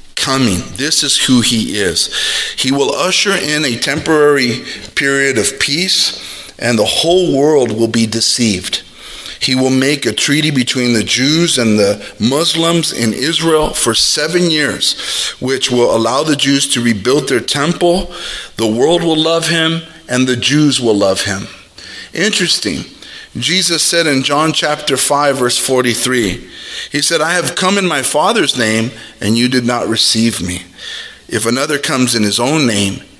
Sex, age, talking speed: male, 40-59, 160 wpm